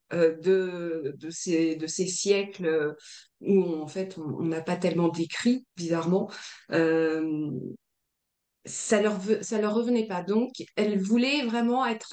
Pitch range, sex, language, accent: 175-220 Hz, female, French, French